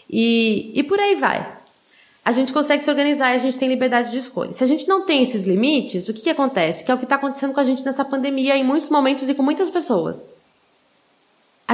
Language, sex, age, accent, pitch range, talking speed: Portuguese, female, 20-39, Brazilian, 225-285 Hz, 240 wpm